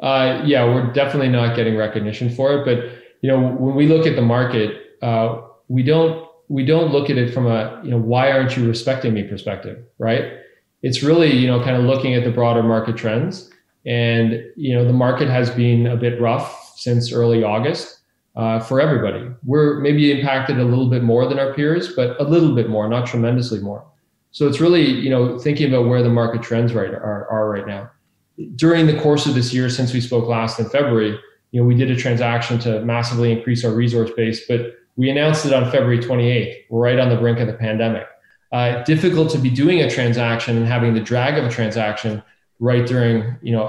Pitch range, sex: 115-135 Hz, male